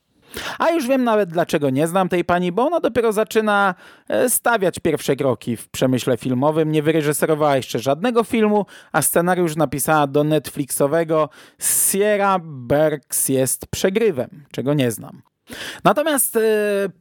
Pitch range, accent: 140-205 Hz, native